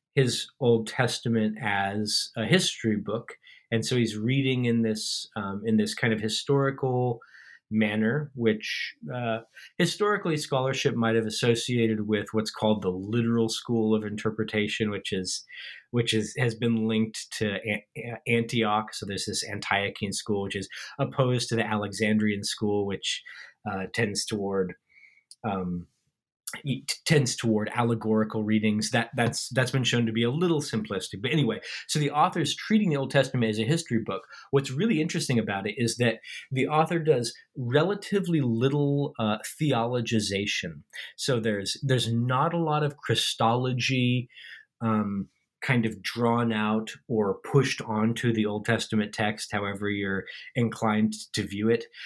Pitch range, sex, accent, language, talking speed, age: 110-130 Hz, male, American, English, 150 wpm, 20-39